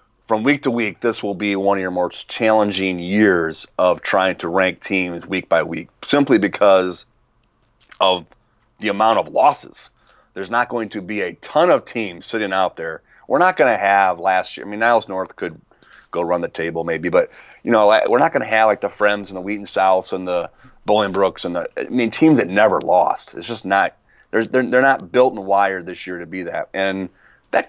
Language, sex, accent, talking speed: English, male, American, 215 wpm